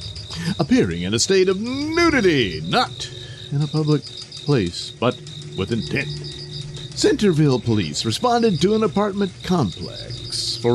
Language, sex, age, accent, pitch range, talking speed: English, male, 50-69, American, 120-165 Hz, 125 wpm